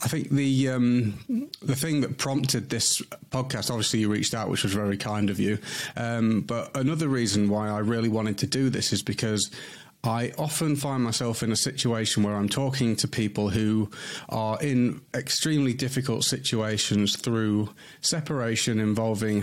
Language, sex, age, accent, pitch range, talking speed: English, male, 30-49, British, 105-130 Hz, 165 wpm